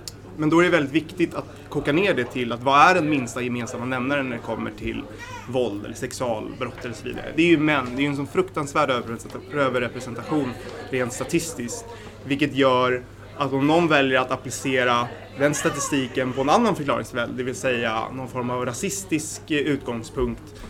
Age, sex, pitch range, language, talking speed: 20-39, male, 115-140 Hz, English, 185 wpm